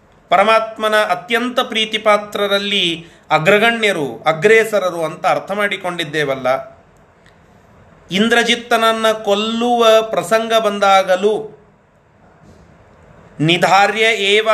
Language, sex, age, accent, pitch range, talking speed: Kannada, male, 30-49, native, 185-225 Hz, 55 wpm